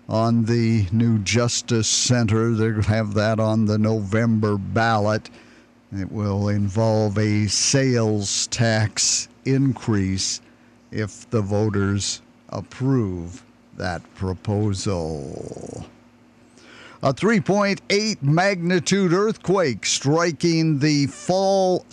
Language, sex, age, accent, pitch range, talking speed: English, male, 50-69, American, 115-150 Hz, 90 wpm